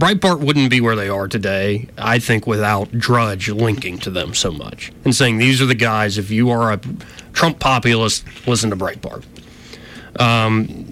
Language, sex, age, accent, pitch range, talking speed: English, male, 30-49, American, 105-130 Hz, 175 wpm